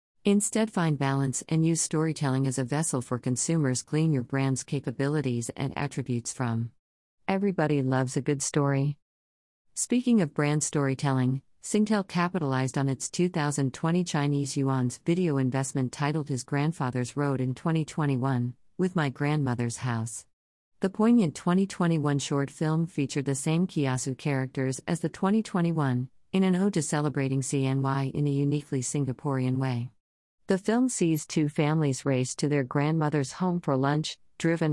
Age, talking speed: 50-69, 145 wpm